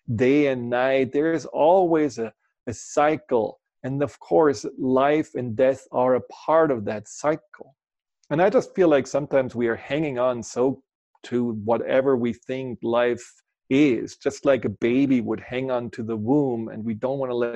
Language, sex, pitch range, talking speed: English, male, 120-140 Hz, 185 wpm